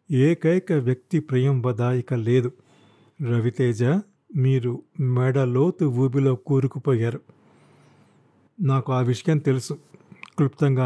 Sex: male